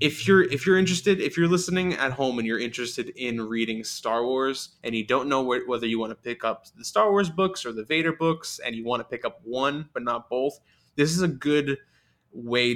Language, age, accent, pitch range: English, 20-39, American, 110-130 Hz